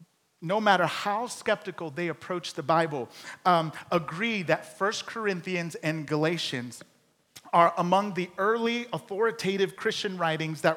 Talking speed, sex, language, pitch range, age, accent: 130 wpm, male, English, 165-210 Hz, 40-59, American